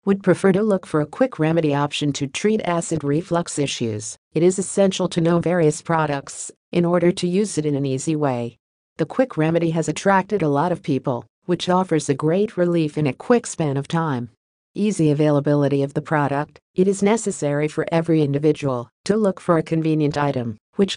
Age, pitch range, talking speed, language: 50-69, 145-180 Hz, 195 wpm, English